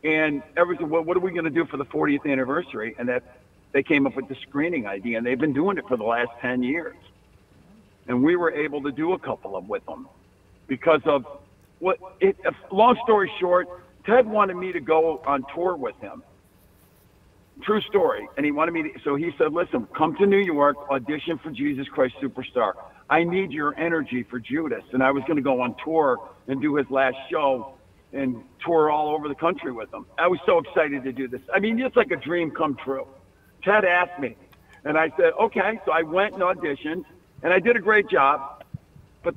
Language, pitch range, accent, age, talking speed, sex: English, 135-185 Hz, American, 50-69, 215 wpm, male